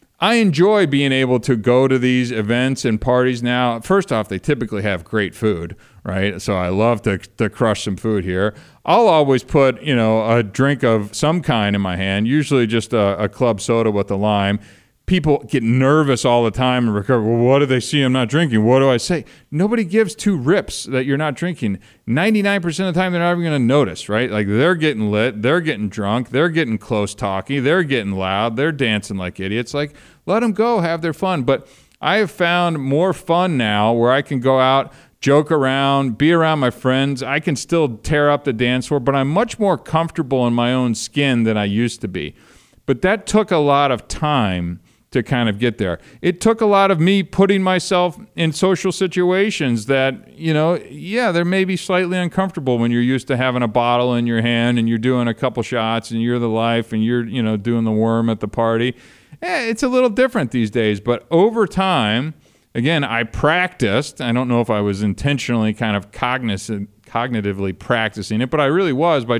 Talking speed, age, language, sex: 215 wpm, 40-59, English, male